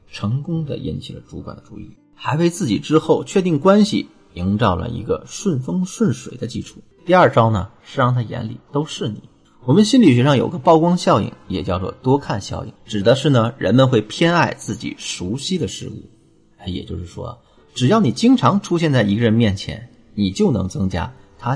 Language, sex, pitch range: Chinese, male, 100-160 Hz